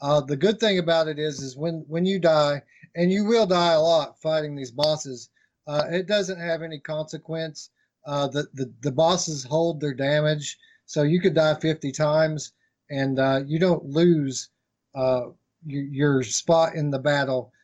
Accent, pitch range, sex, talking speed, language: American, 140-165 Hz, male, 175 wpm, English